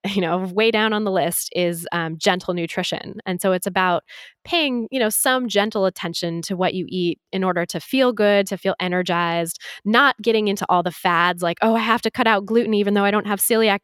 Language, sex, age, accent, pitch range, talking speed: English, female, 20-39, American, 175-220 Hz, 230 wpm